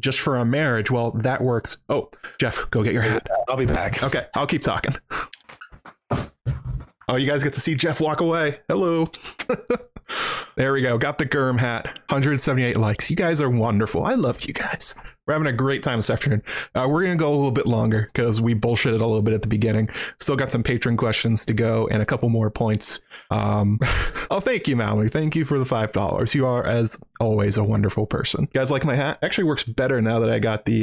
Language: English